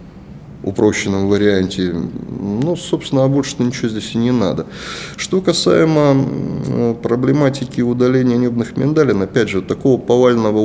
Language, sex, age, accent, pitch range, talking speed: Russian, male, 30-49, native, 100-125 Hz, 120 wpm